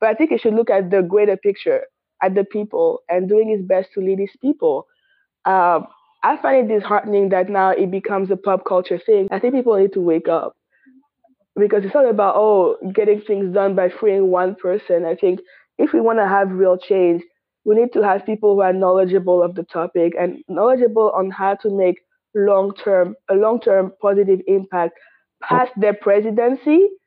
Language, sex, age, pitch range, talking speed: English, female, 20-39, 190-250 Hz, 195 wpm